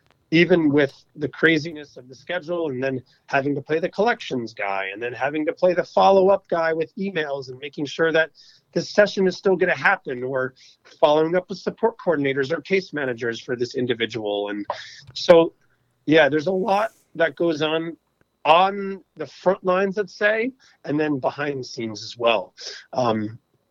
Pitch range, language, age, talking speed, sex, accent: 130-165 Hz, English, 30-49, 180 wpm, male, American